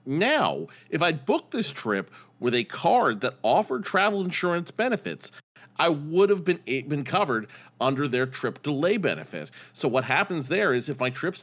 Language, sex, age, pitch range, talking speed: English, male, 40-59, 125-155 Hz, 175 wpm